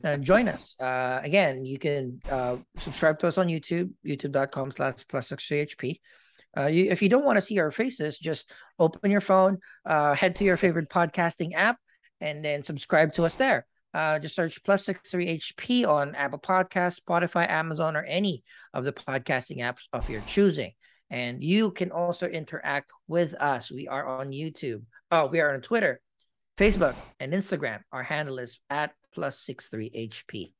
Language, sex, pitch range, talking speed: English, male, 125-170 Hz, 175 wpm